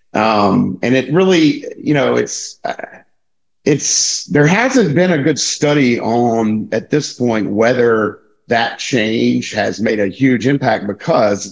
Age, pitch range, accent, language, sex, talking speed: 50-69, 95-120 Hz, American, English, male, 140 wpm